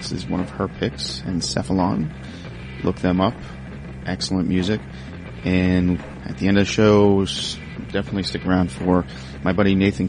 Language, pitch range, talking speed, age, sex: English, 85-100 Hz, 155 wpm, 30-49, male